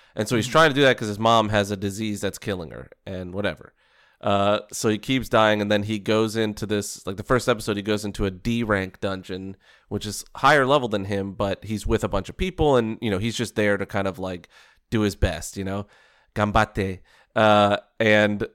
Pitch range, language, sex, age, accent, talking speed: 100-110 Hz, English, male, 30-49, American, 225 wpm